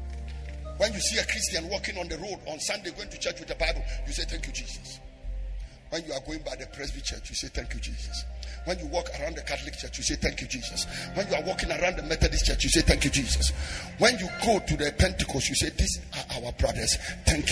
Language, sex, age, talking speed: English, male, 50-69, 250 wpm